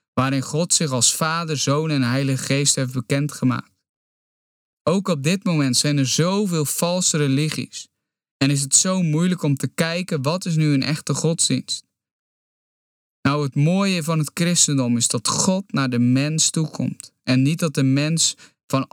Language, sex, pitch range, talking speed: Dutch, male, 135-160 Hz, 170 wpm